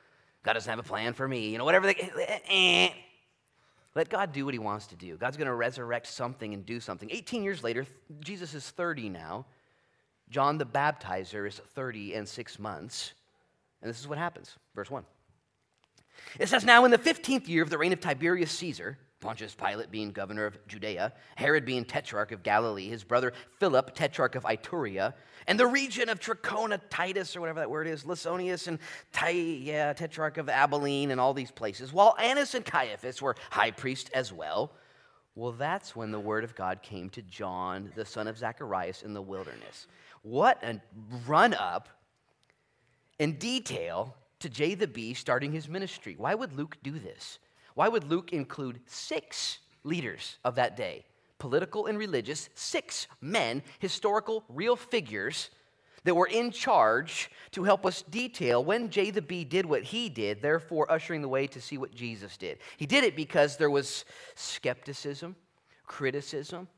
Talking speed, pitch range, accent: 175 wpm, 120-180 Hz, American